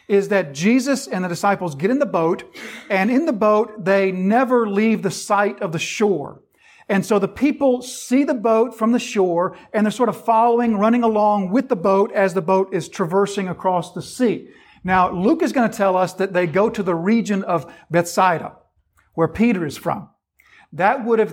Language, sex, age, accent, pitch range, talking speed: English, male, 40-59, American, 185-225 Hz, 205 wpm